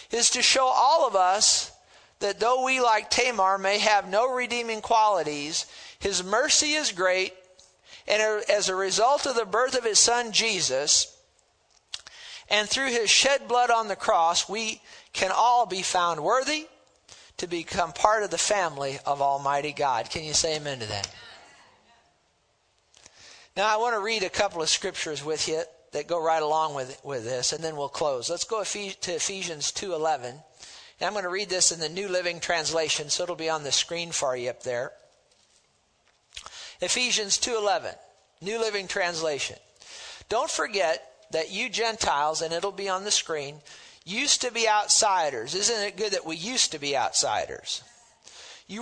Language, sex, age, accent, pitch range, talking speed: English, male, 50-69, American, 165-235 Hz, 170 wpm